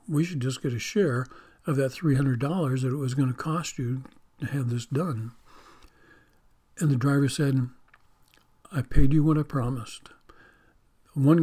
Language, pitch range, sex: English, 130-160 Hz, male